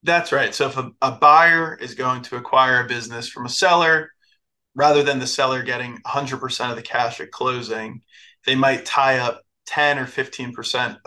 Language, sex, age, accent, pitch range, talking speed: English, male, 20-39, American, 120-145 Hz, 185 wpm